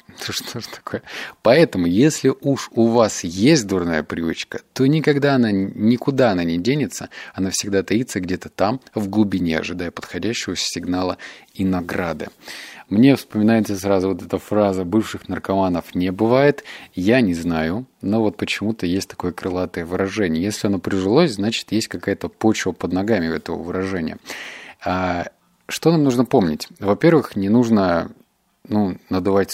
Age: 30-49